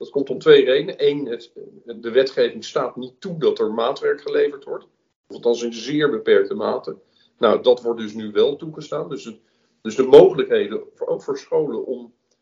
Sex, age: male, 50-69